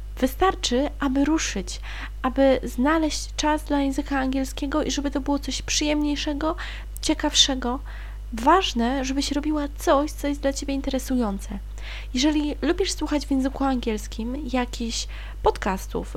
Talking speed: 125 wpm